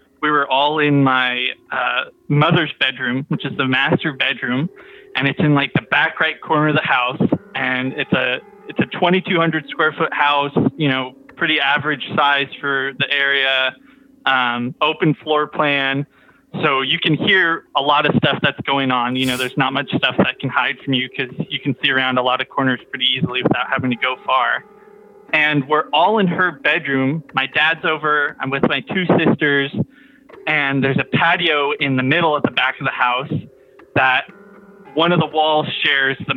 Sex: male